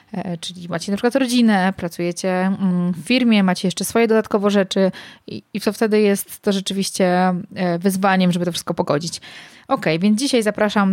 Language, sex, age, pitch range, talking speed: Polish, female, 20-39, 180-210 Hz, 155 wpm